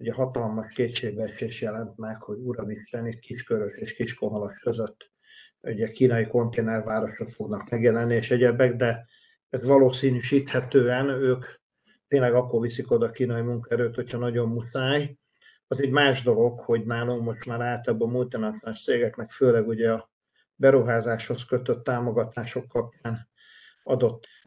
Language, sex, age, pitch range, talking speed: Hungarian, male, 50-69, 115-130 Hz, 130 wpm